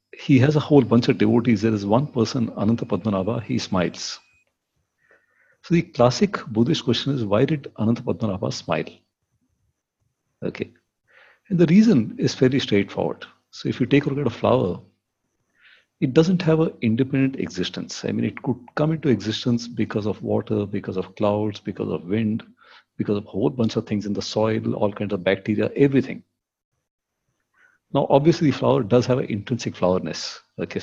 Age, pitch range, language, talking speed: 50-69, 105-140 Hz, English, 170 wpm